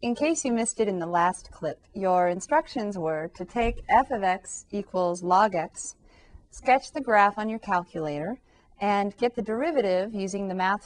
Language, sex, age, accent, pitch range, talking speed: English, female, 40-59, American, 180-225 Hz, 180 wpm